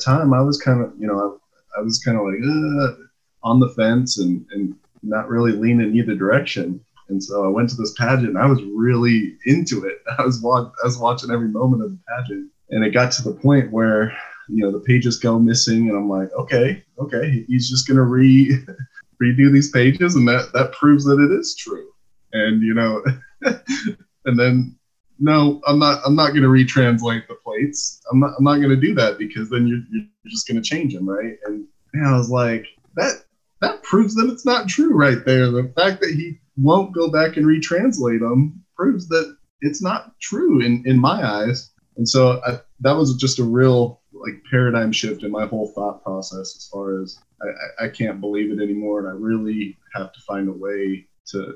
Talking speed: 215 wpm